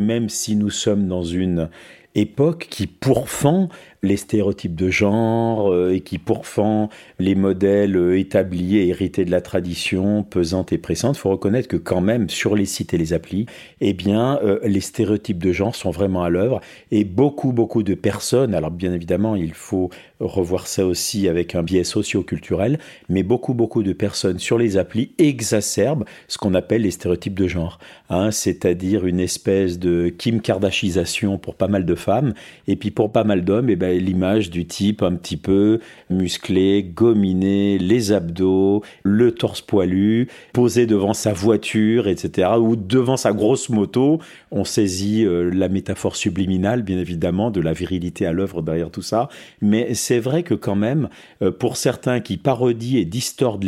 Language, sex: French, male